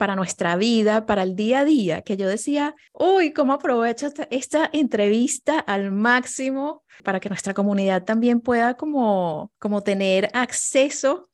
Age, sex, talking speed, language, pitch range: 30-49, female, 150 wpm, Spanish, 195-240 Hz